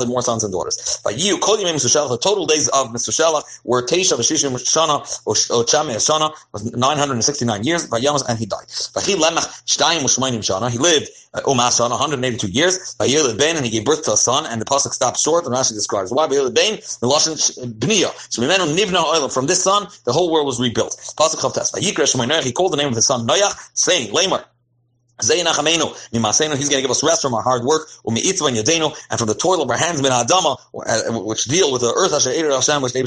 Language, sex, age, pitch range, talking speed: English, male, 30-49, 120-160 Hz, 165 wpm